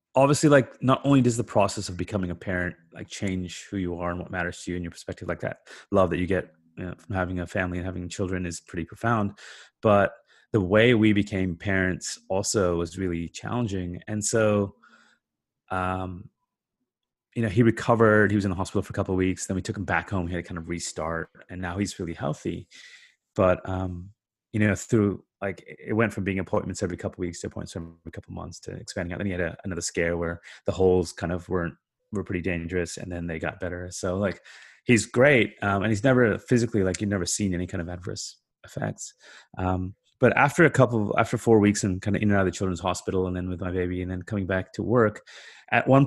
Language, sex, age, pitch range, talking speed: English, male, 30-49, 90-110 Hz, 230 wpm